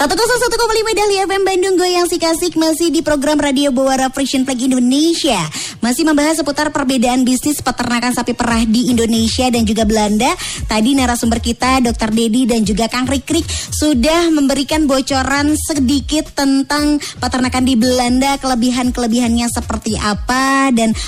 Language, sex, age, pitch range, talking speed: Indonesian, male, 20-39, 235-295 Hz, 135 wpm